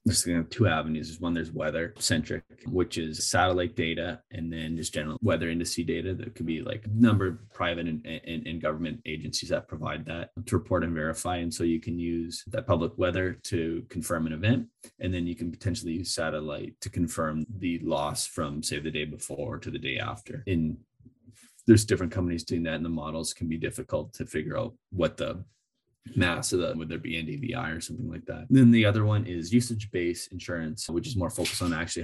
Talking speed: 215 wpm